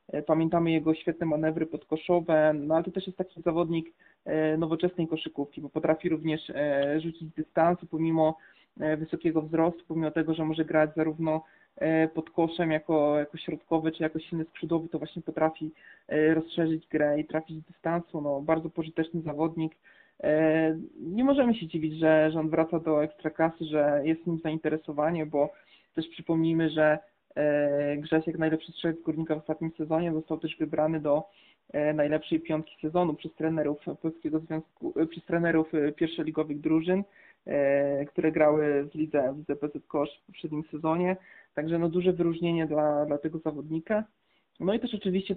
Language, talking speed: Polish, 145 wpm